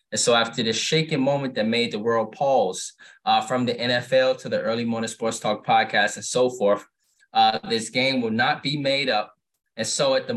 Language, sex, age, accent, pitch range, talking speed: English, male, 20-39, American, 110-145 Hz, 215 wpm